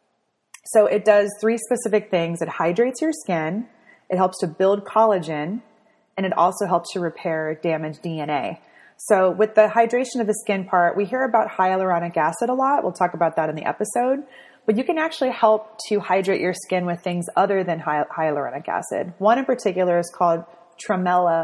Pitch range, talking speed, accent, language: 170-215 Hz, 185 wpm, American, English